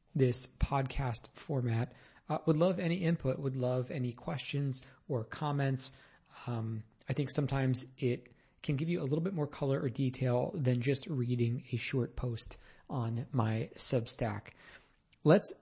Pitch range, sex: 120-145 Hz, male